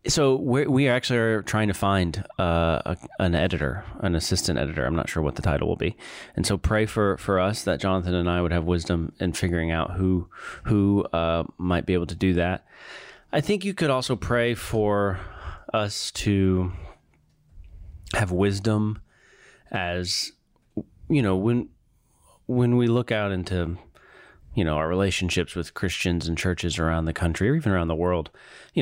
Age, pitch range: 30-49, 90-110 Hz